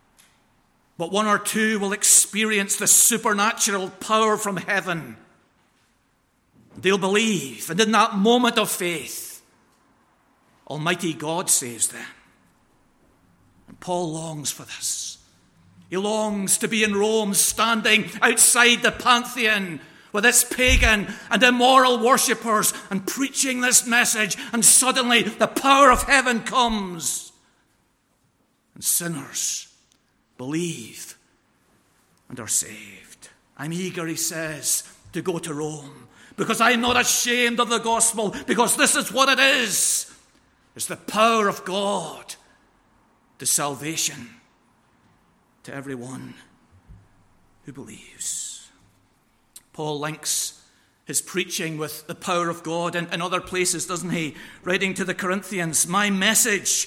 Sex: male